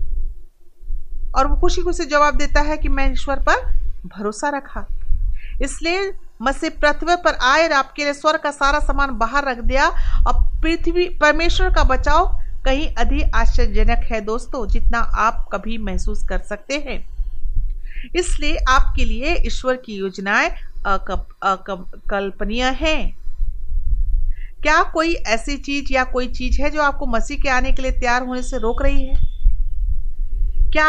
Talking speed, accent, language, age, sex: 145 wpm, native, Hindi, 50-69, female